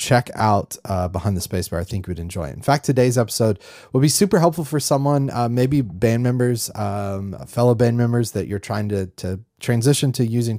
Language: English